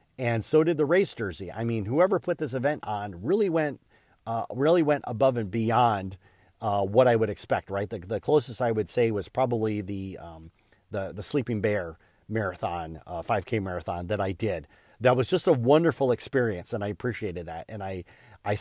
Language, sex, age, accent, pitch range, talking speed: English, male, 40-59, American, 105-130 Hz, 195 wpm